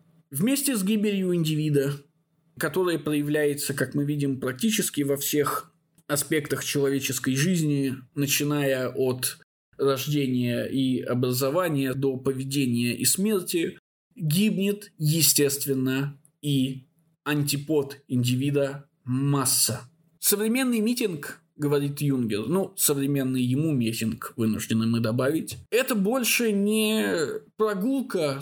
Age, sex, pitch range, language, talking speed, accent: 20-39, male, 135-175 Hz, Russian, 95 wpm, native